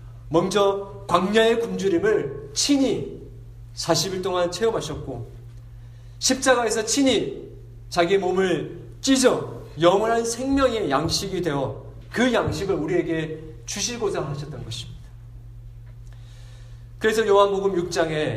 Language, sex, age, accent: Korean, male, 40-59, native